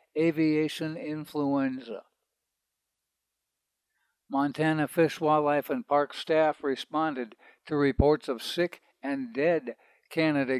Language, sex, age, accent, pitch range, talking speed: English, male, 60-79, American, 135-160 Hz, 90 wpm